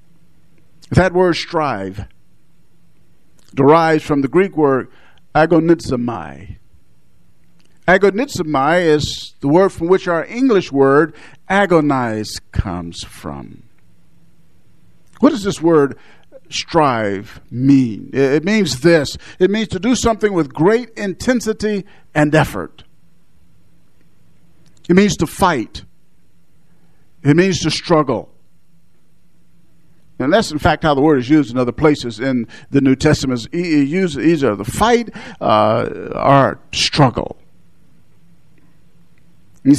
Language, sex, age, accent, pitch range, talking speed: English, male, 50-69, American, 135-185 Hz, 110 wpm